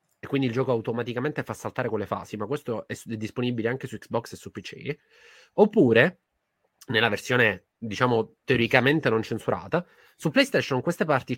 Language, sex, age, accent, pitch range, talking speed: Italian, male, 20-39, native, 110-130 Hz, 165 wpm